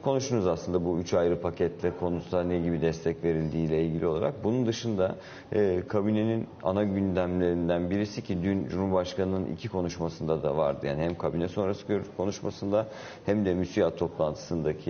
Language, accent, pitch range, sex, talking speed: Turkish, native, 85-110 Hz, male, 145 wpm